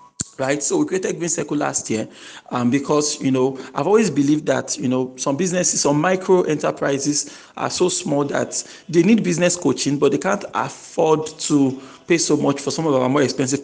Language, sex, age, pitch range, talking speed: English, male, 40-59, 140-175 Hz, 200 wpm